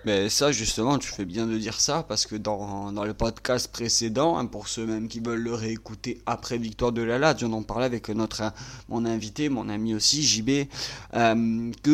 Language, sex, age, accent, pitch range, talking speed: French, male, 30-49, French, 110-130 Hz, 200 wpm